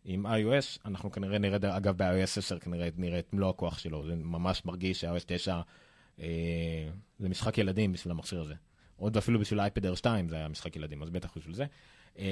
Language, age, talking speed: Hebrew, 30-49, 190 wpm